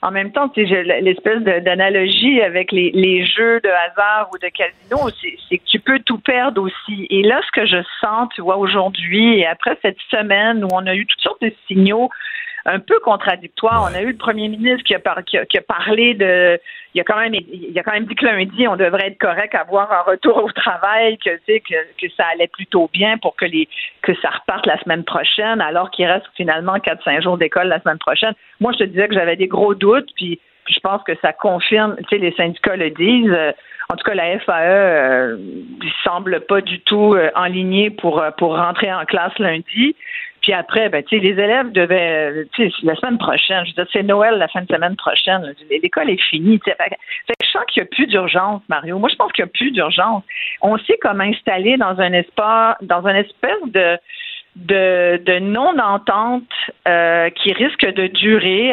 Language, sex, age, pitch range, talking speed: French, female, 50-69, 180-230 Hz, 220 wpm